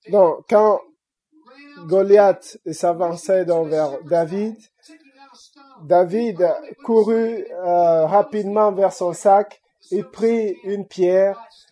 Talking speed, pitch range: 85 wpm, 170-225 Hz